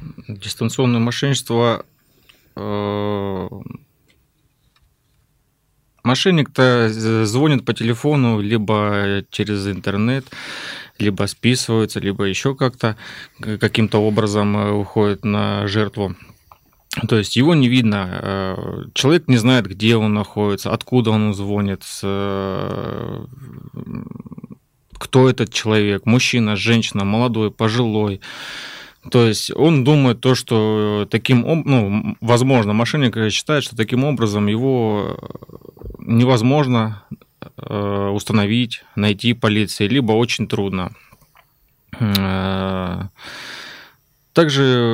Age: 20-39